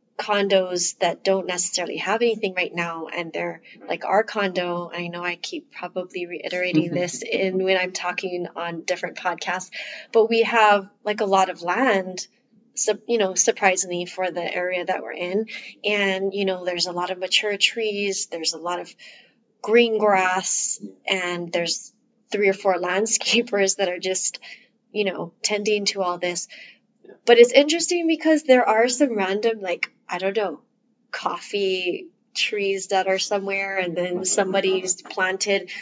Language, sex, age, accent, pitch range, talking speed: English, female, 20-39, American, 180-230 Hz, 160 wpm